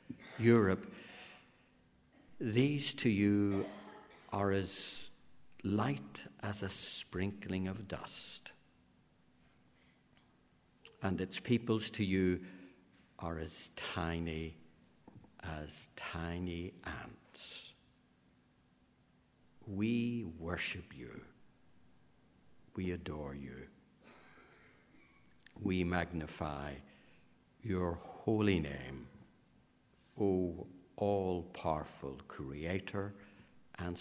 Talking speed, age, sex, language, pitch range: 65 wpm, 60-79, male, English, 85-100 Hz